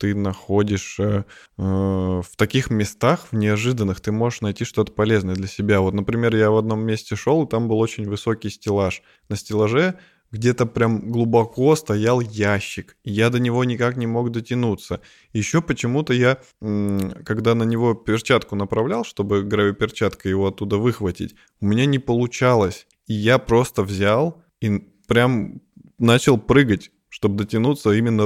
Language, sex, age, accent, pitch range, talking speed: Russian, male, 20-39, native, 100-120 Hz, 150 wpm